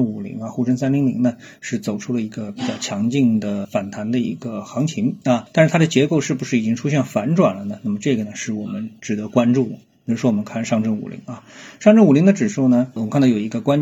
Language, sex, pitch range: Chinese, male, 120-205 Hz